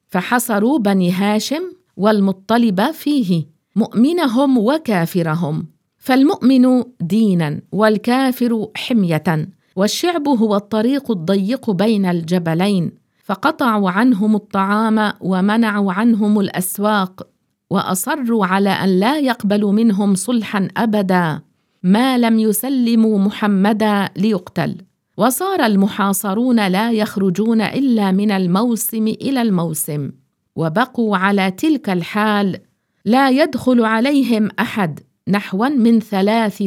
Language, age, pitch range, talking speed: English, 50-69, 190-235 Hz, 90 wpm